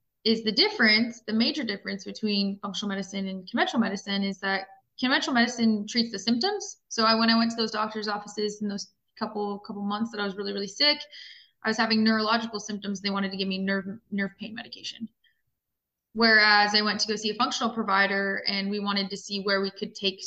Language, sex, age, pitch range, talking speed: English, female, 20-39, 195-225 Hz, 210 wpm